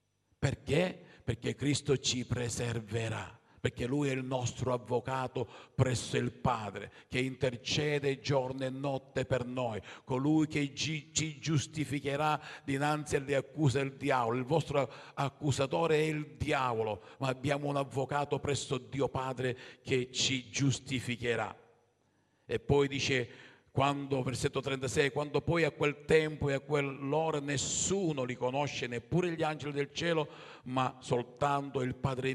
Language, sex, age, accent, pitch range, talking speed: Italian, male, 50-69, native, 130-150 Hz, 135 wpm